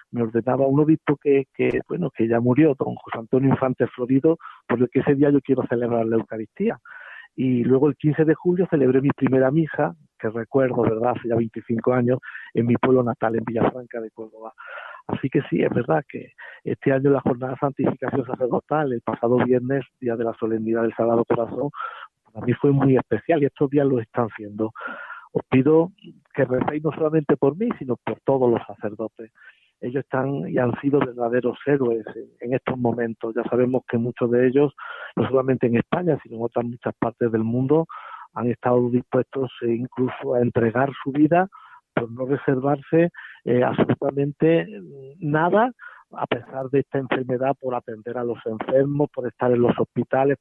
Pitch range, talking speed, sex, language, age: 120-140 Hz, 180 wpm, male, Spanish, 50-69